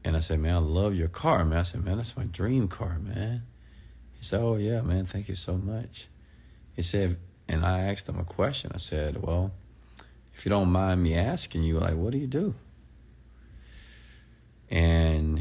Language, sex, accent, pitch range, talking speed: English, male, American, 80-100 Hz, 195 wpm